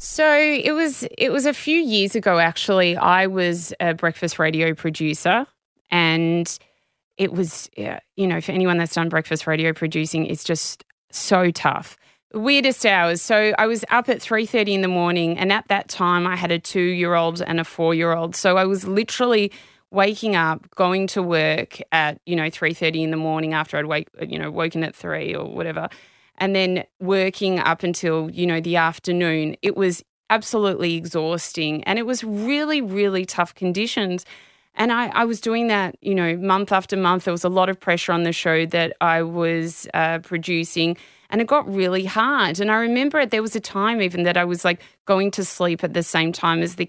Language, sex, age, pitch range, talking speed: English, female, 20-39, 165-200 Hz, 195 wpm